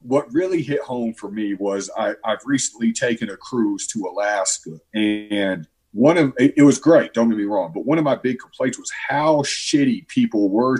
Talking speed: 200 wpm